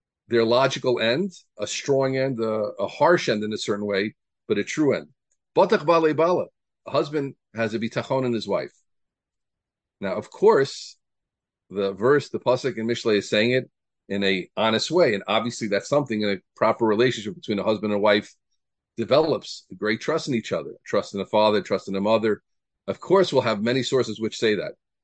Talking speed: 190 wpm